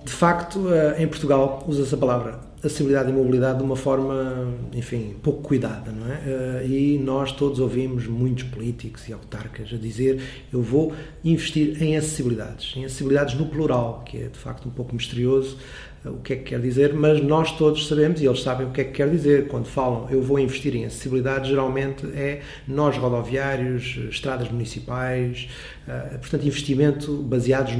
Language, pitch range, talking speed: Portuguese, 130-150 Hz, 170 wpm